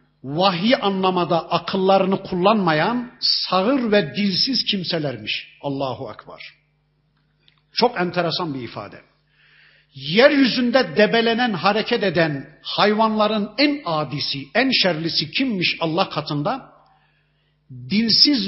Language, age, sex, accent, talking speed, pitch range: Turkish, 50-69, male, native, 90 wpm, 150-210 Hz